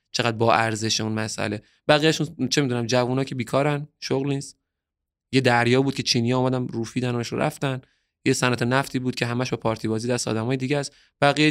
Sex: male